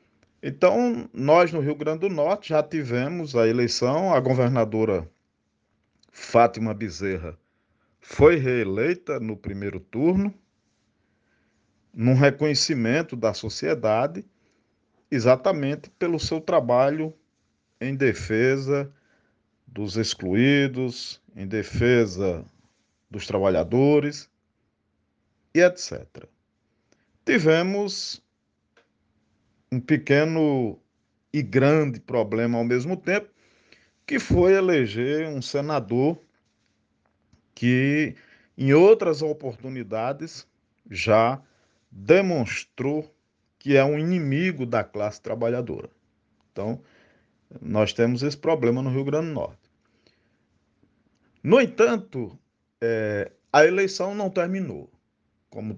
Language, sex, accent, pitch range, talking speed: Portuguese, male, Brazilian, 115-155 Hz, 90 wpm